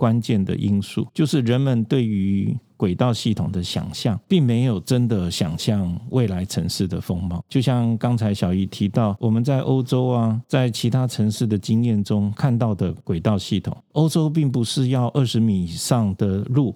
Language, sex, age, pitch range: Chinese, male, 50-69, 105-130 Hz